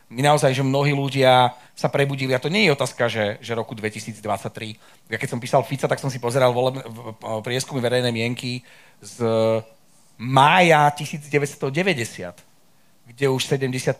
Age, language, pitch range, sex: 40-59, Slovak, 120-145 Hz, male